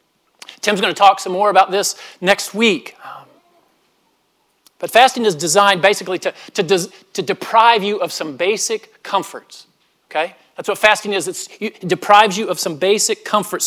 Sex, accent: male, American